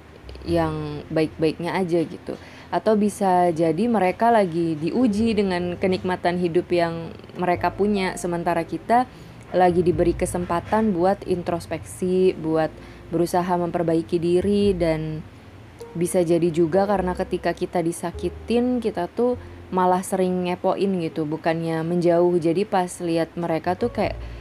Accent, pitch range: native, 170-200 Hz